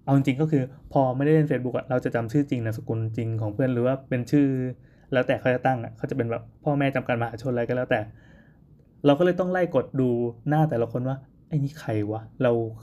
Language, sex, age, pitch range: Thai, male, 20-39, 115-145 Hz